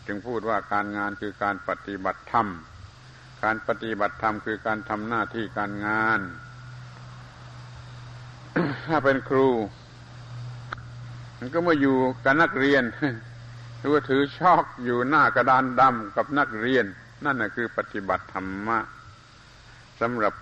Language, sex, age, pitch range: Thai, male, 60-79, 105-125 Hz